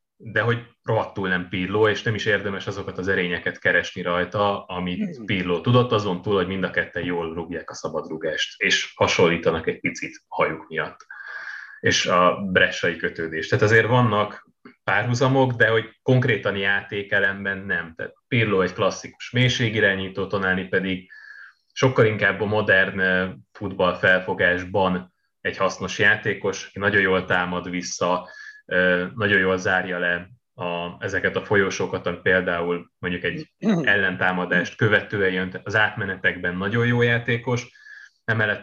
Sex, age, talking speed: male, 30-49, 135 wpm